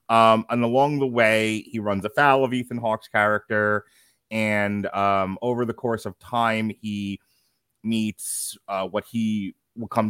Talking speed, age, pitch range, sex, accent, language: 155 wpm, 30-49, 105-130 Hz, male, American, English